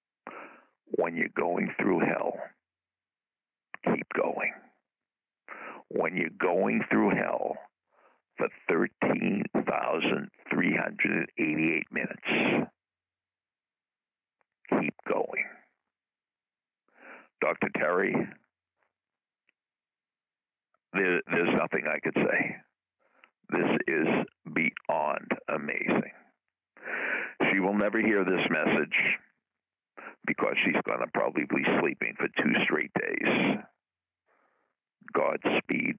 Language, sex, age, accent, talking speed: English, male, 60-79, American, 75 wpm